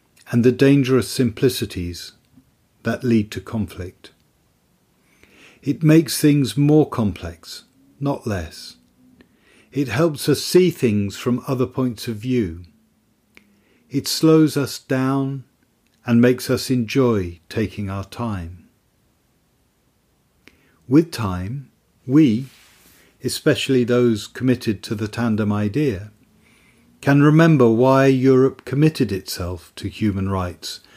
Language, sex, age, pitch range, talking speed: English, male, 50-69, 100-140 Hz, 105 wpm